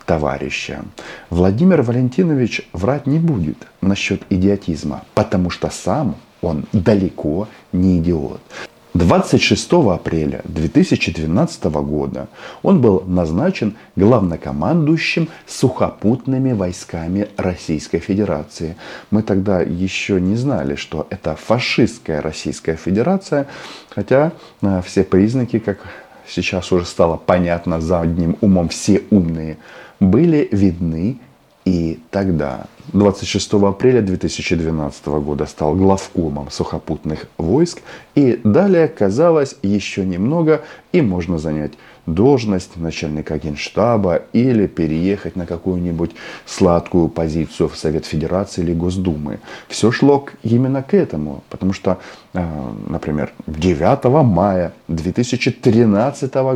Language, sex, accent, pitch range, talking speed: Russian, male, native, 80-105 Hz, 100 wpm